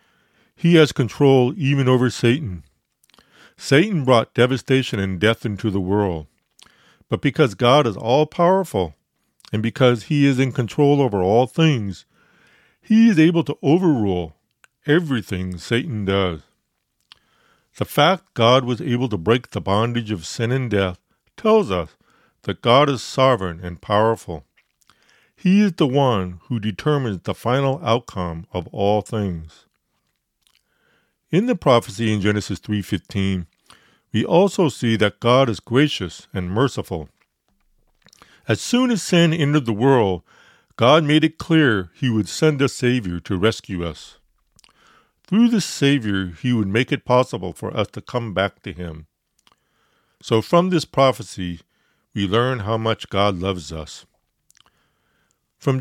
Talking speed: 140 wpm